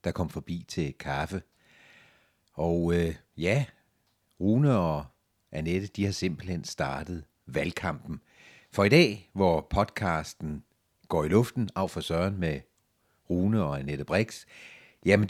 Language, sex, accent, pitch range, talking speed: Danish, male, native, 85-125 Hz, 125 wpm